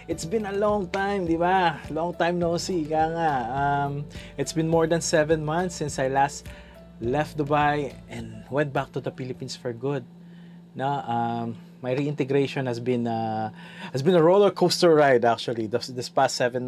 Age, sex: 20-39, male